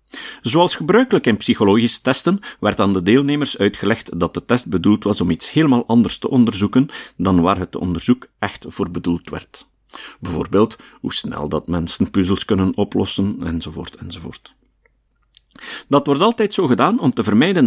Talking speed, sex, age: 160 wpm, male, 50-69